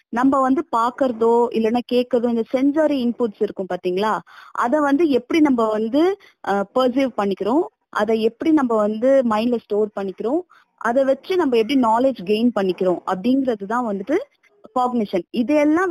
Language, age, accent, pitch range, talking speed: Tamil, 20-39, native, 210-275 Hz, 90 wpm